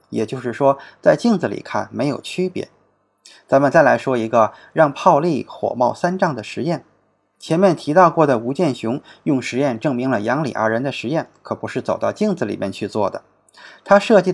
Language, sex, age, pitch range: Chinese, male, 20-39, 135-185 Hz